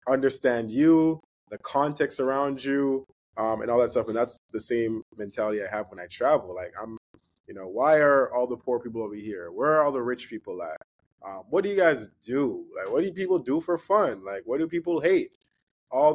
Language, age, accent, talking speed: English, 20-39, American, 220 wpm